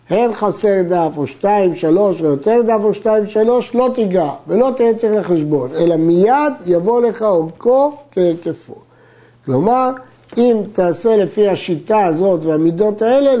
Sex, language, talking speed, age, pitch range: male, Hebrew, 140 wpm, 60-79, 160-225 Hz